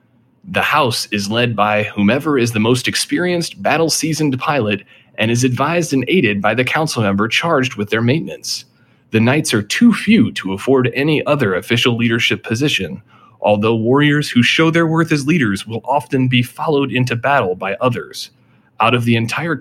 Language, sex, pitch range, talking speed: English, male, 110-150 Hz, 175 wpm